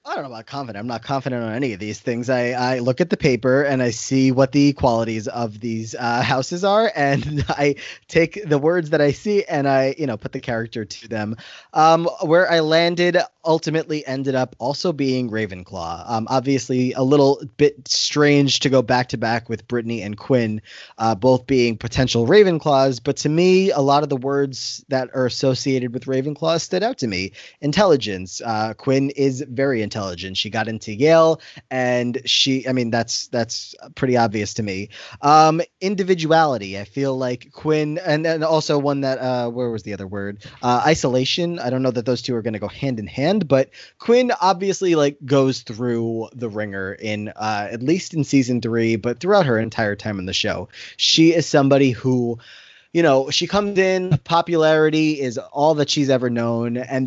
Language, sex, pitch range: English, male, 115-150 Hz